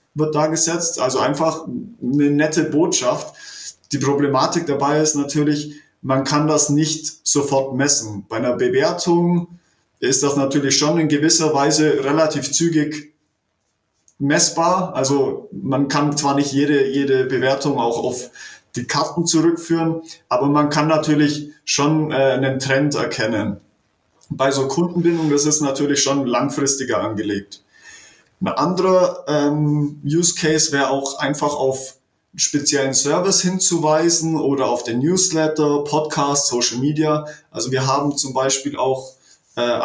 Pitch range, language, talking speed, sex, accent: 135-155 Hz, German, 135 wpm, male, German